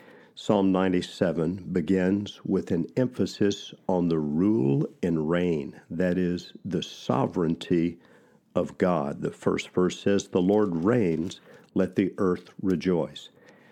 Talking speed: 125 wpm